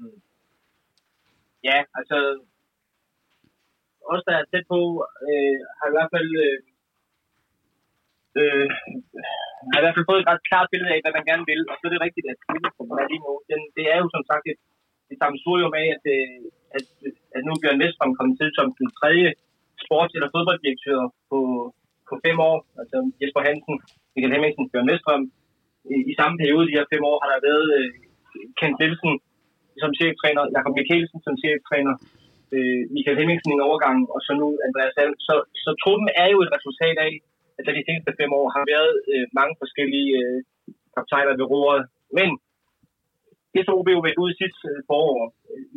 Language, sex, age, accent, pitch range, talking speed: Danish, male, 20-39, native, 140-170 Hz, 175 wpm